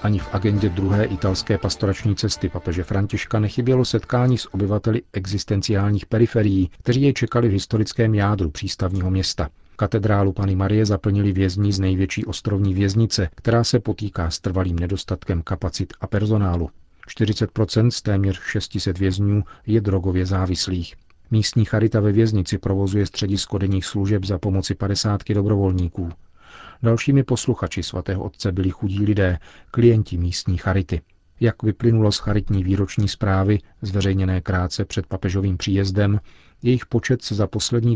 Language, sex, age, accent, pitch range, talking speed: Czech, male, 40-59, native, 95-110 Hz, 140 wpm